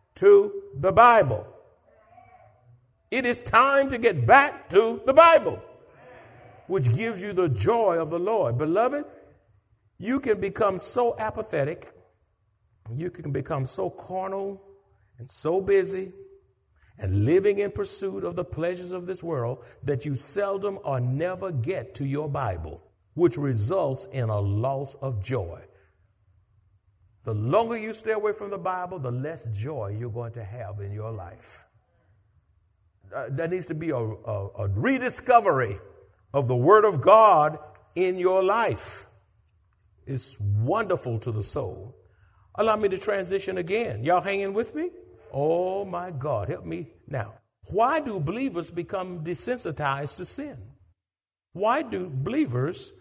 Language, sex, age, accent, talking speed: English, male, 60-79, American, 140 wpm